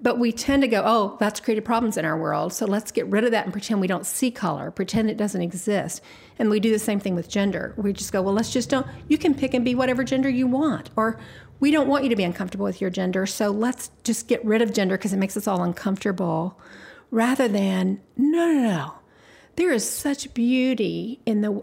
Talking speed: 240 wpm